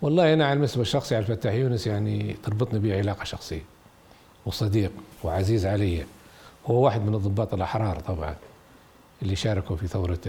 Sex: male